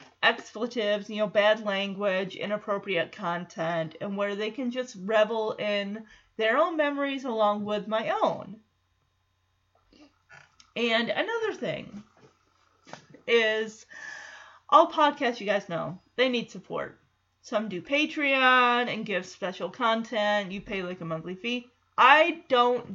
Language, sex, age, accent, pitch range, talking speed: English, female, 30-49, American, 205-255 Hz, 125 wpm